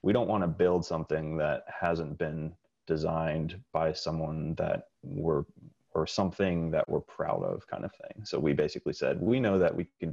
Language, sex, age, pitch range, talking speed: English, male, 30-49, 80-90 Hz, 190 wpm